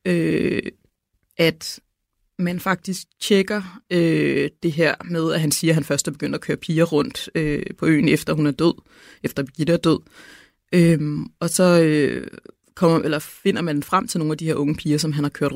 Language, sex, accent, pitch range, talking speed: Danish, female, native, 155-195 Hz, 200 wpm